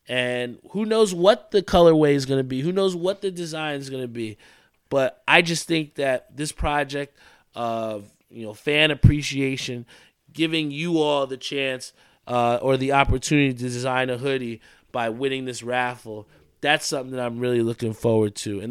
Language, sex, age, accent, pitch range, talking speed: English, male, 20-39, American, 115-145 Hz, 185 wpm